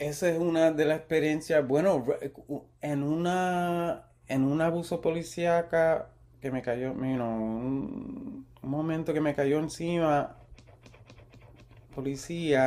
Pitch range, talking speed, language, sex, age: 115-145 Hz, 125 wpm, Spanish, male, 30-49